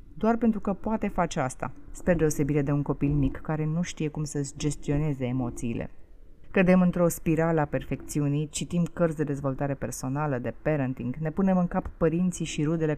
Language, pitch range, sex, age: Romanian, 135-175 Hz, female, 30-49